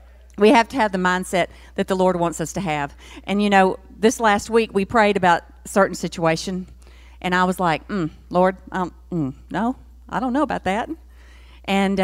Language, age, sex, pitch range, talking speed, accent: English, 50-69, female, 165-240 Hz, 200 wpm, American